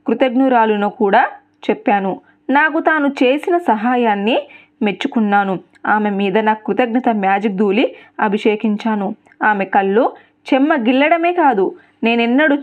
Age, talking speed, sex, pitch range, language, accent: 20-39, 95 wpm, female, 215-275 Hz, Telugu, native